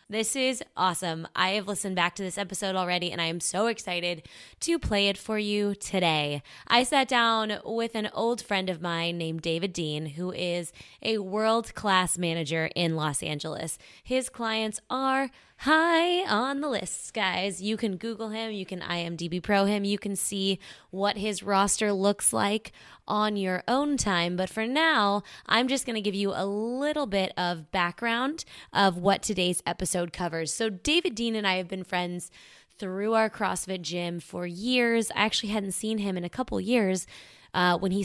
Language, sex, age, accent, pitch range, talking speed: English, female, 20-39, American, 170-220 Hz, 185 wpm